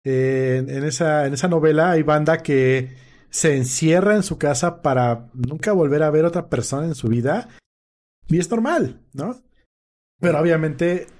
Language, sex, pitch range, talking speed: Spanish, male, 125-160 Hz, 165 wpm